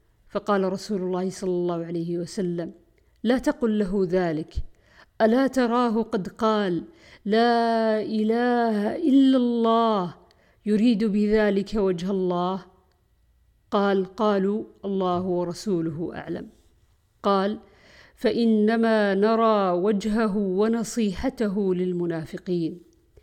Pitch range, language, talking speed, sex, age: 175-220 Hz, Arabic, 90 wpm, female, 50-69